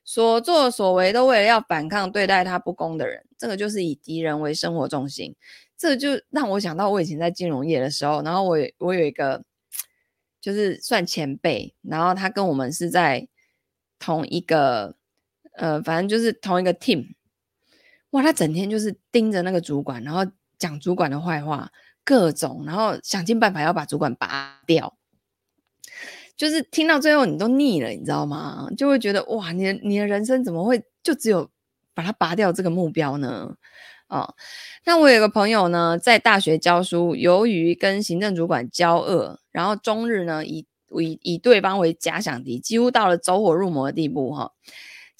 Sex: female